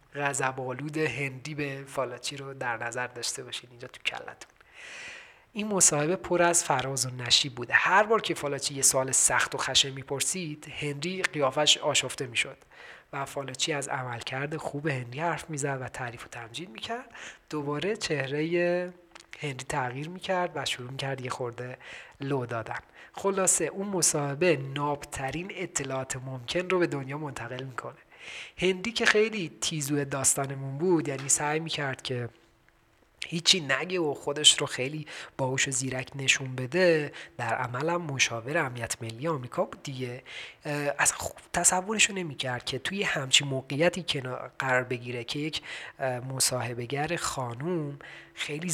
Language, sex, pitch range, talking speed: Persian, male, 130-165 Hz, 140 wpm